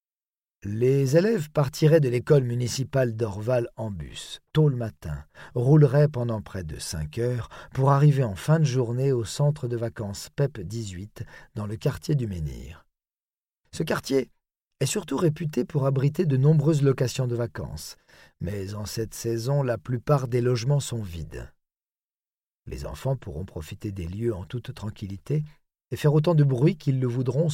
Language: French